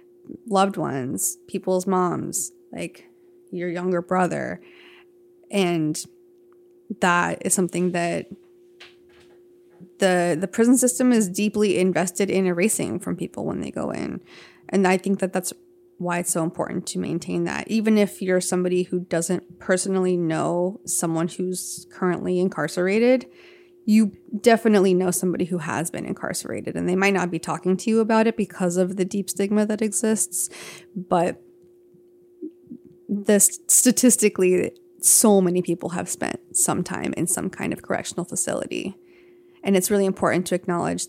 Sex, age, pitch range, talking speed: female, 20-39, 180-245 Hz, 145 wpm